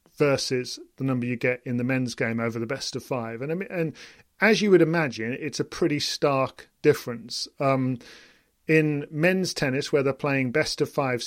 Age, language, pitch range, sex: 40-59, English, 125-155 Hz, male